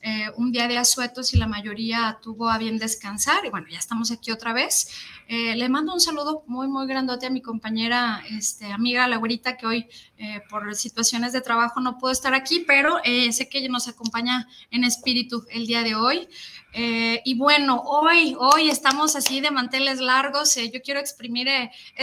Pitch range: 230-270 Hz